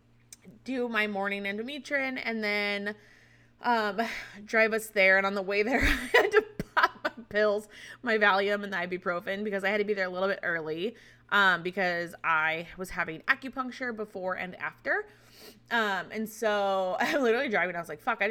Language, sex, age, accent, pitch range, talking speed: English, female, 20-39, American, 165-215 Hz, 185 wpm